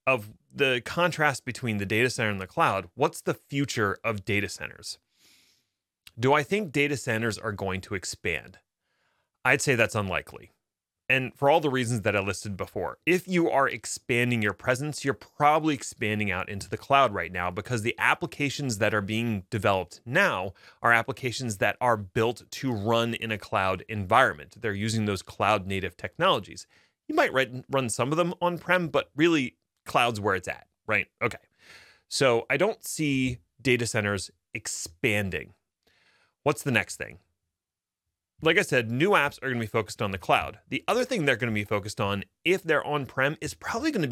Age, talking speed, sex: 30-49, 175 wpm, male